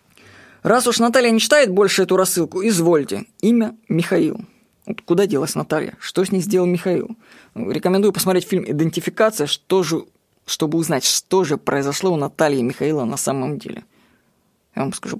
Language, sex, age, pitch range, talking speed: Russian, female, 20-39, 170-220 Hz, 160 wpm